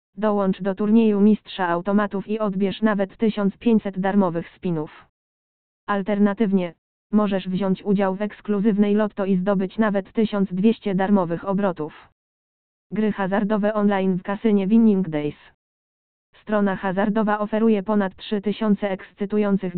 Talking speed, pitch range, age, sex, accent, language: 110 wpm, 190-210 Hz, 20-39, female, native, Polish